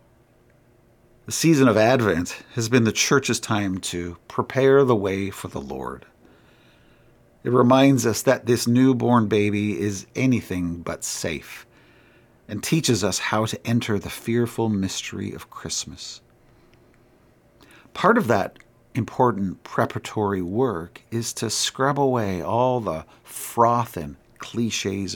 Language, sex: English, male